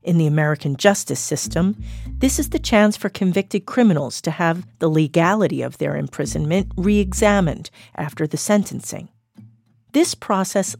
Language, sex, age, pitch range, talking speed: English, female, 40-59, 145-205 Hz, 140 wpm